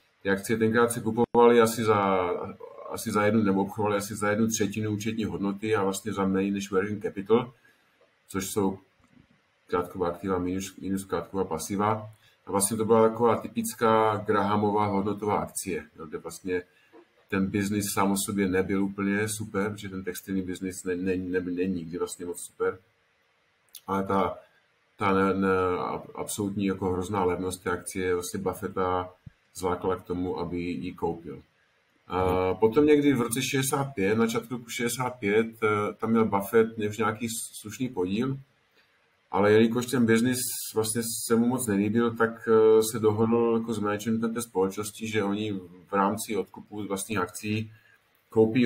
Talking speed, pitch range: 150 wpm, 95-115 Hz